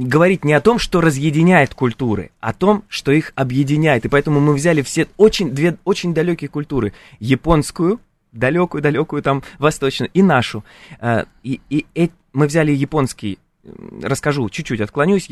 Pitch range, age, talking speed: 120-160 Hz, 20-39, 155 wpm